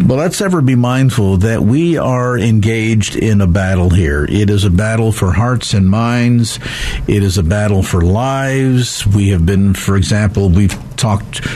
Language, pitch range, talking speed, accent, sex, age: English, 105-140 Hz, 175 wpm, American, male, 50-69